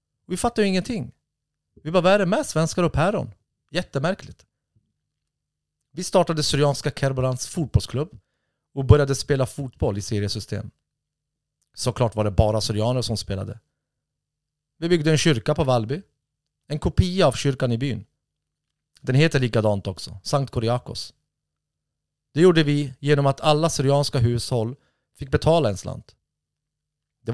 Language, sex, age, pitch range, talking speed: Swedish, male, 40-59, 110-145 Hz, 135 wpm